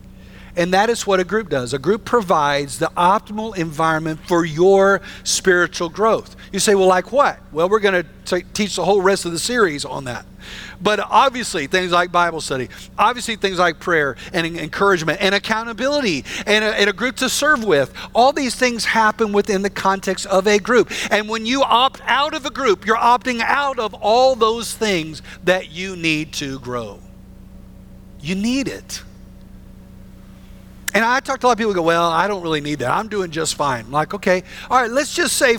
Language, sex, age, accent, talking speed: English, male, 50-69, American, 195 wpm